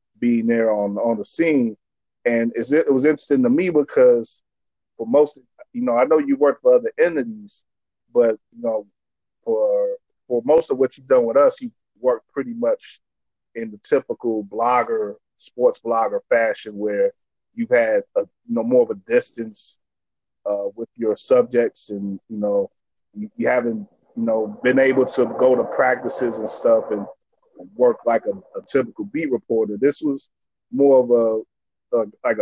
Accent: American